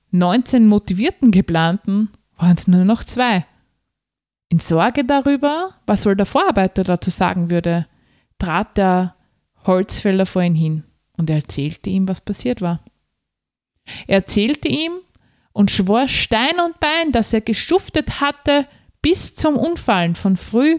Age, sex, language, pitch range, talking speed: 20-39, female, German, 170-235 Hz, 140 wpm